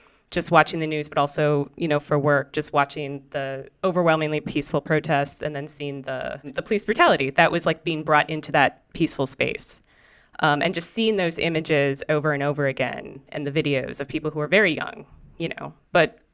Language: English